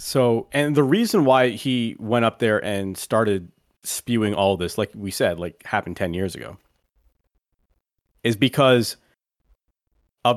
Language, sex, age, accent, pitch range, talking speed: English, male, 30-49, American, 90-115 Hz, 145 wpm